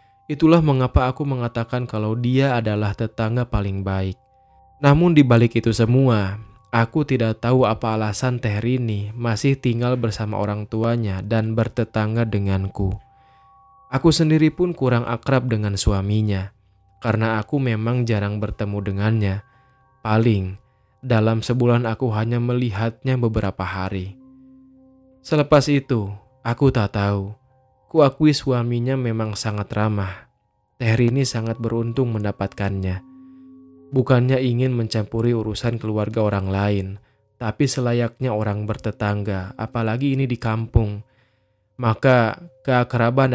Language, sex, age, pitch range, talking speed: Indonesian, male, 20-39, 105-130 Hz, 110 wpm